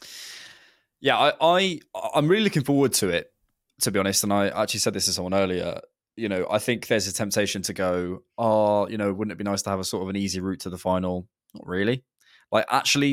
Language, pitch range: English, 95-120 Hz